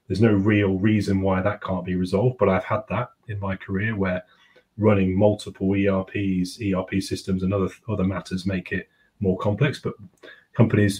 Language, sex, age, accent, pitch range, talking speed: English, male, 30-49, British, 95-105 Hz, 175 wpm